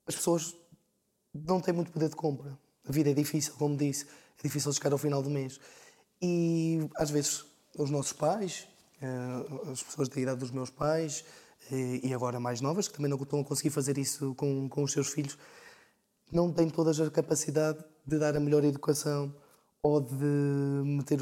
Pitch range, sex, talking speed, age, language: 140-165 Hz, male, 180 wpm, 20-39, Portuguese